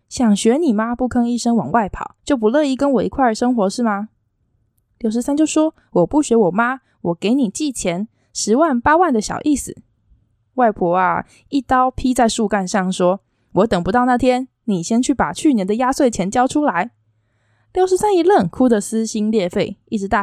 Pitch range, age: 180-255 Hz, 20-39